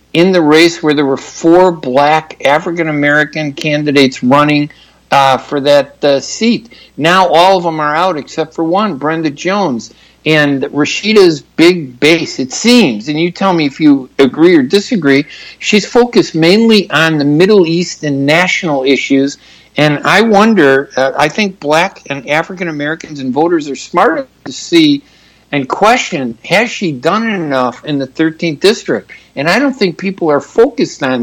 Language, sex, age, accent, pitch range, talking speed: English, male, 60-79, American, 135-175 Hz, 165 wpm